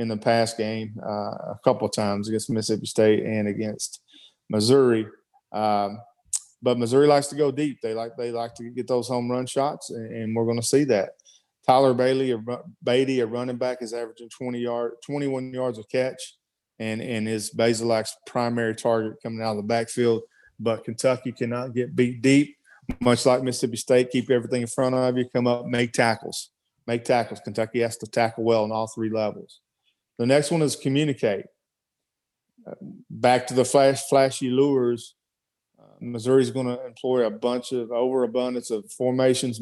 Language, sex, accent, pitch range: English, male, American, 115-130 Hz